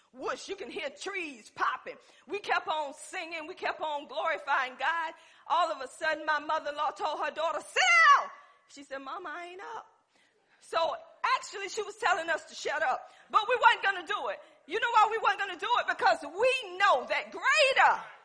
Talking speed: 200 wpm